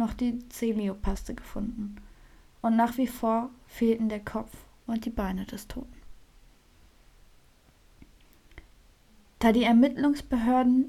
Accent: German